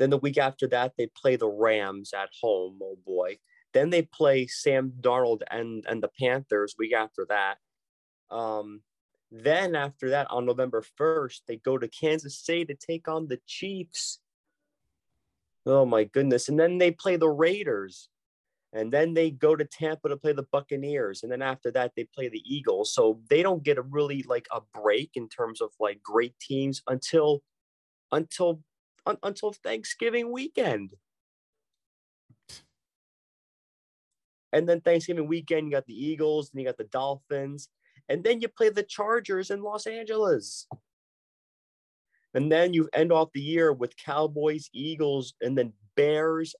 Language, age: English, 30-49